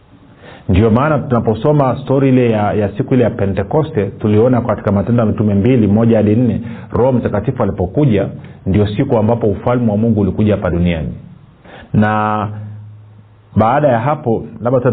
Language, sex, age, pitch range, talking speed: Swahili, male, 40-59, 100-125 Hz, 135 wpm